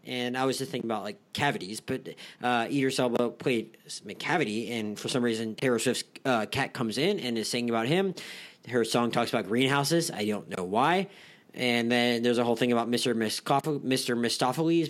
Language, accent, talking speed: English, American, 210 wpm